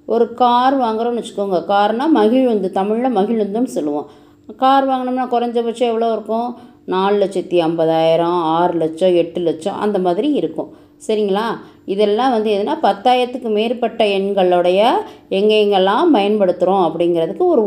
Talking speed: 110 wpm